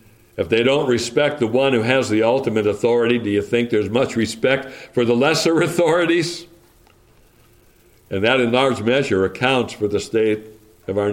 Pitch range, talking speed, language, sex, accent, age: 115-160 Hz, 175 wpm, English, male, American, 60-79